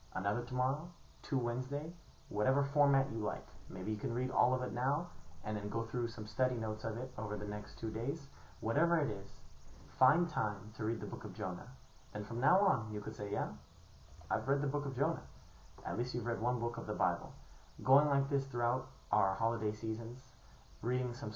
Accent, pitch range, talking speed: American, 105-130 Hz, 205 wpm